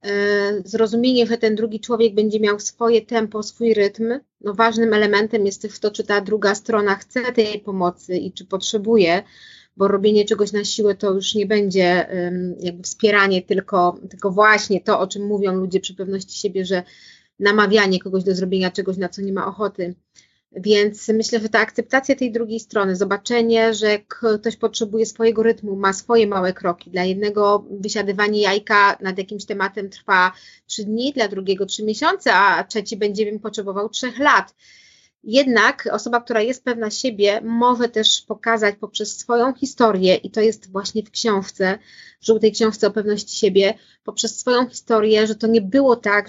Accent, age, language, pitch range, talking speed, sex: native, 20-39, Polish, 200-225 Hz, 170 wpm, female